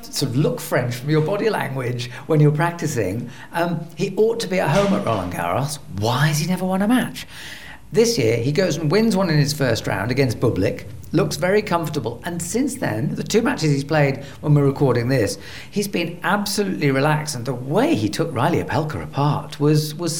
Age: 40-59